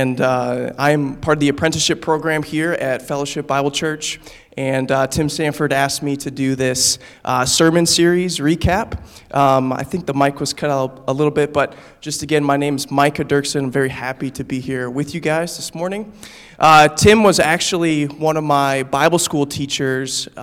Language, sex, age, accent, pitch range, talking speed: English, male, 20-39, American, 135-160 Hz, 195 wpm